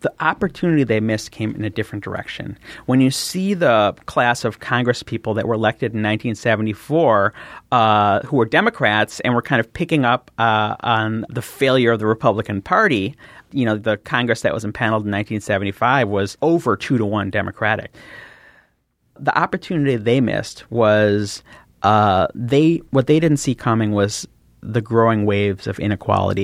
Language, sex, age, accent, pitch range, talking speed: English, male, 30-49, American, 105-120 Hz, 195 wpm